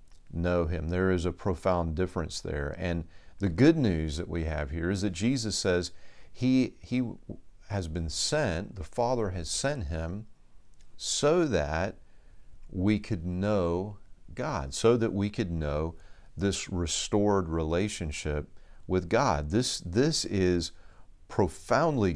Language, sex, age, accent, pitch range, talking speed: English, male, 40-59, American, 85-105 Hz, 135 wpm